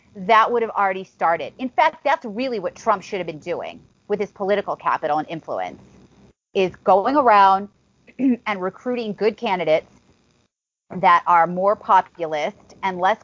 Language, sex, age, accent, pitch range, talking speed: English, female, 30-49, American, 180-220 Hz, 155 wpm